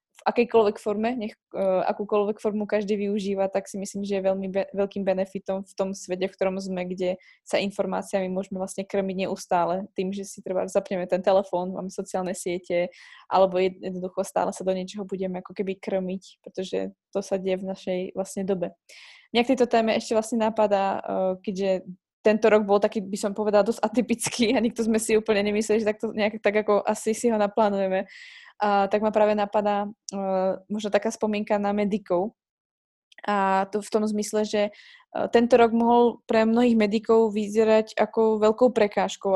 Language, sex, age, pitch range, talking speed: Slovak, female, 20-39, 190-215 Hz, 180 wpm